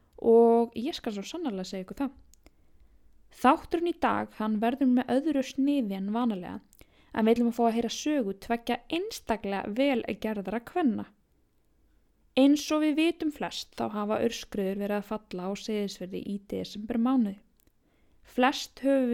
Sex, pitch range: female, 200-265 Hz